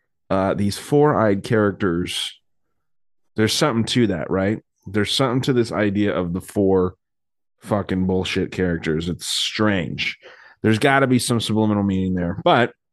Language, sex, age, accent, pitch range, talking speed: English, male, 30-49, American, 105-140 Hz, 145 wpm